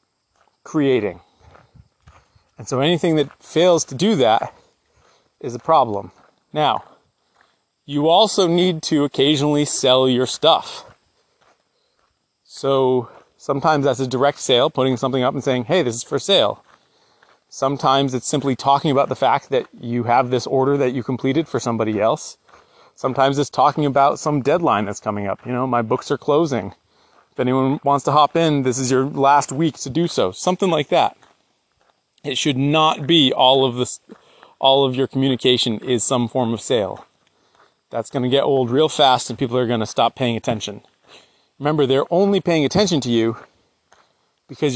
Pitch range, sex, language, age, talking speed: 125-150 Hz, male, English, 30-49, 165 wpm